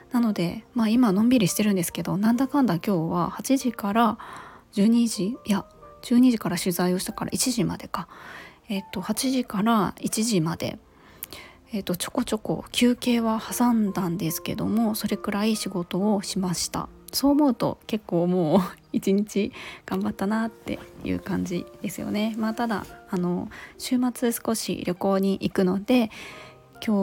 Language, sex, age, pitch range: Japanese, female, 20-39, 195-245 Hz